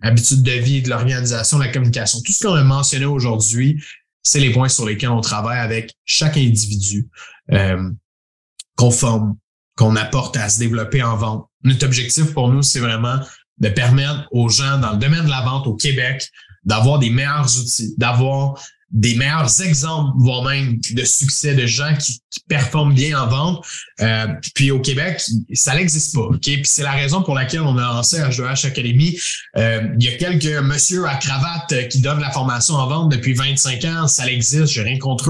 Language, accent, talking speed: French, Canadian, 195 wpm